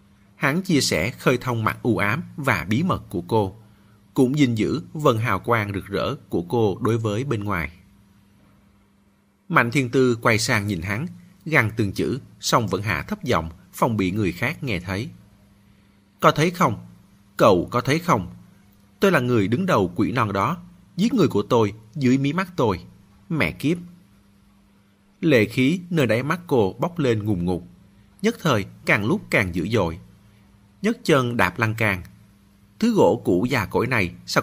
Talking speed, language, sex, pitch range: 180 wpm, Vietnamese, male, 100-130 Hz